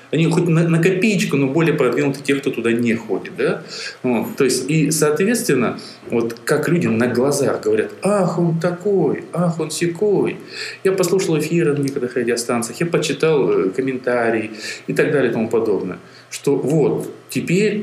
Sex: male